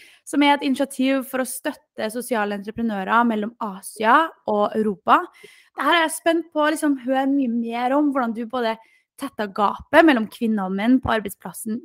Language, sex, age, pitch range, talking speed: English, female, 20-39, 220-285 Hz, 175 wpm